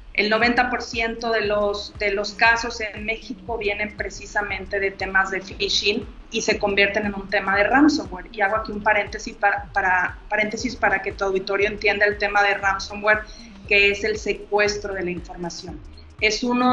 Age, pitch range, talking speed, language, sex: 30-49, 200-230 Hz, 175 wpm, Spanish, female